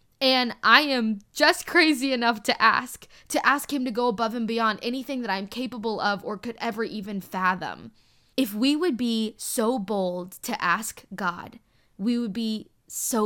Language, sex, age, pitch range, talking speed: English, female, 10-29, 210-280 Hz, 175 wpm